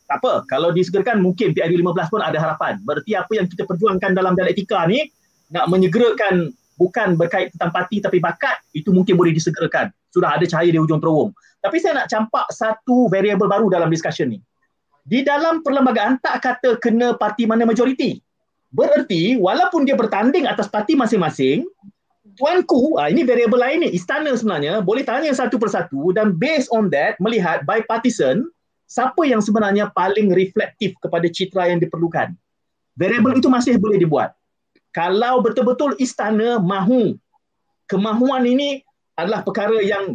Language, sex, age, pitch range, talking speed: Malay, male, 30-49, 185-250 Hz, 155 wpm